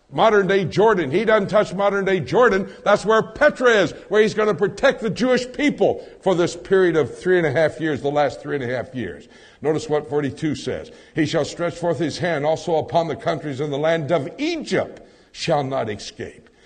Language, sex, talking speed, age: English, male, 205 wpm, 60-79